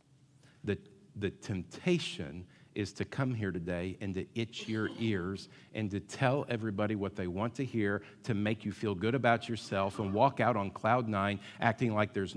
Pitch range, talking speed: 95-135 Hz, 185 wpm